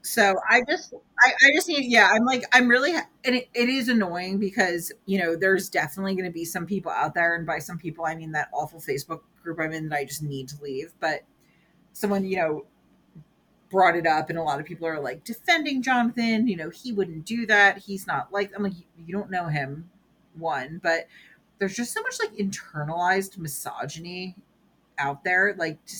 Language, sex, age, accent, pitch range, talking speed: English, female, 30-49, American, 165-210 Hz, 210 wpm